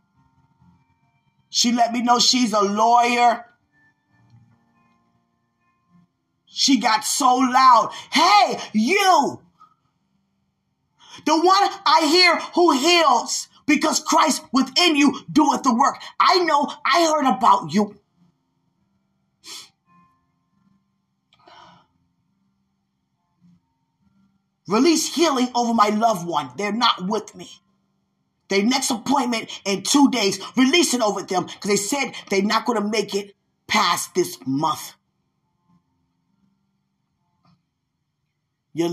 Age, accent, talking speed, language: 20-39, American, 100 wpm, English